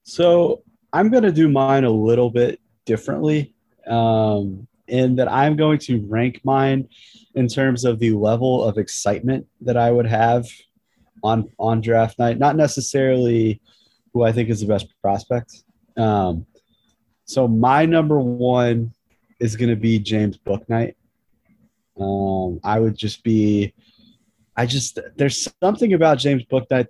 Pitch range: 100-125 Hz